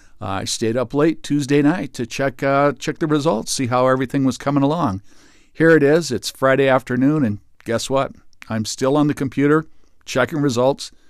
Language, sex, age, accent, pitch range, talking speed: English, male, 50-69, American, 115-145 Hz, 190 wpm